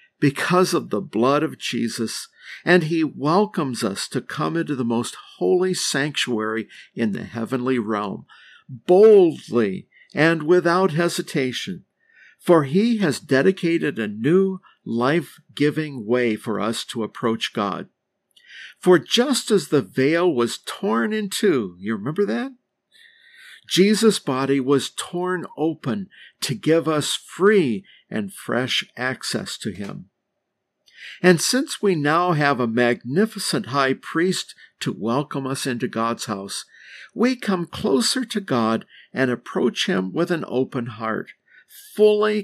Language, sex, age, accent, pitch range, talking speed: English, male, 50-69, American, 125-190 Hz, 130 wpm